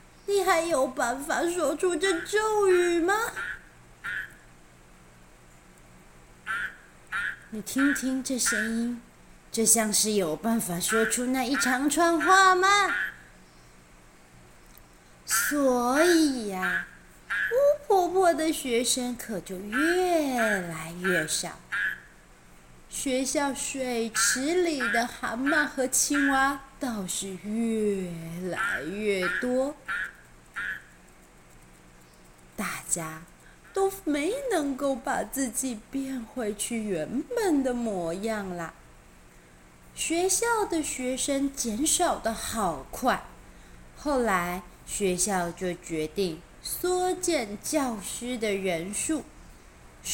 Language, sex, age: Chinese, female, 30-49